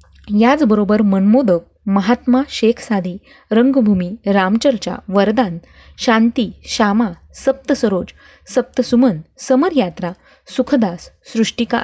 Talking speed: 70 wpm